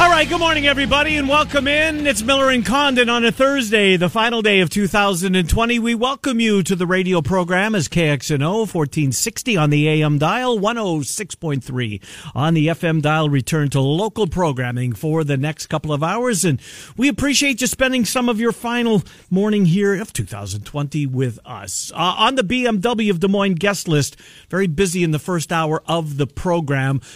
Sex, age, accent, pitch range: male, 50-69, American, 140-210 Hz